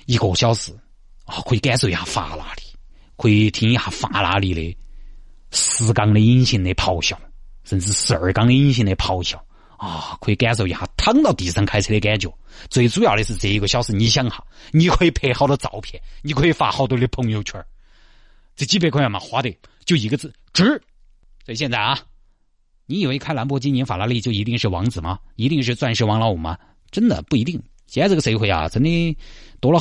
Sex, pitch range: male, 100-140 Hz